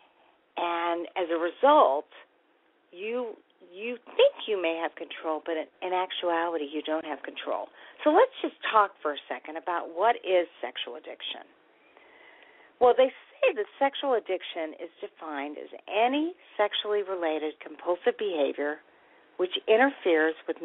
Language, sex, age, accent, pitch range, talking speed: English, female, 50-69, American, 165-250 Hz, 140 wpm